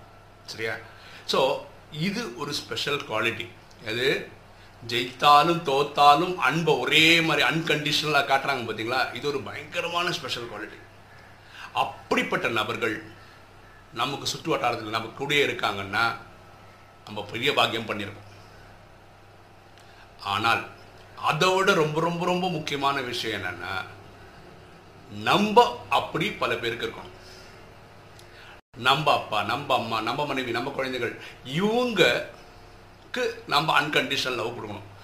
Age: 50-69